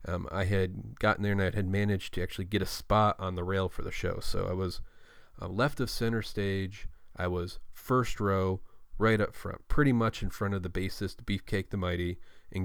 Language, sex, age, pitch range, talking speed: English, male, 30-49, 90-105 Hz, 220 wpm